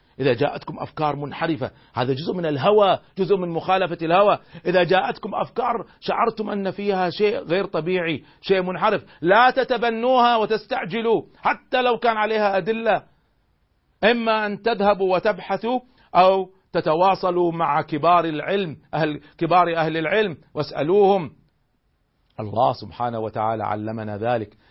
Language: Arabic